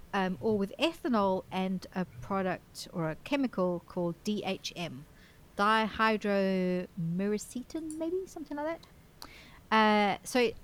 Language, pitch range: English, 185-245 Hz